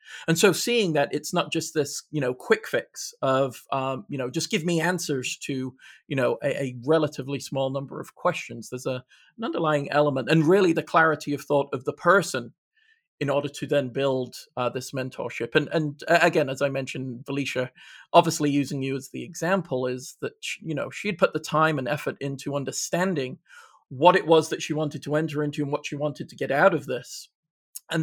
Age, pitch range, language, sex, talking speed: 40-59, 135-165 Hz, English, male, 205 wpm